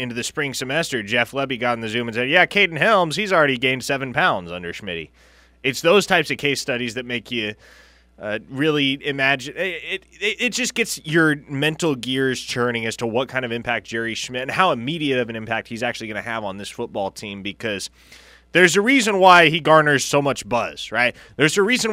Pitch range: 110-155 Hz